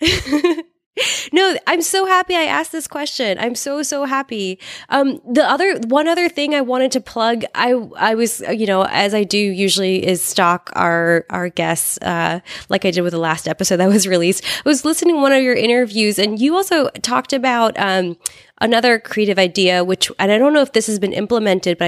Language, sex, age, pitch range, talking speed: English, female, 20-39, 175-235 Hz, 205 wpm